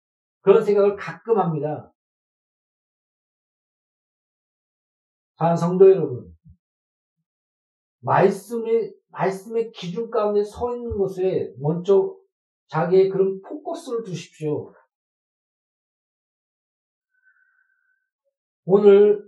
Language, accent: Korean, native